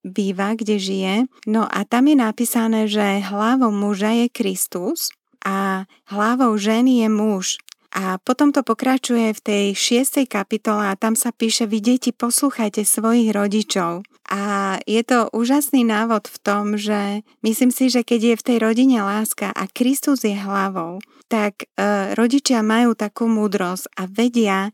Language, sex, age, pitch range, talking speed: Slovak, female, 30-49, 205-240 Hz, 155 wpm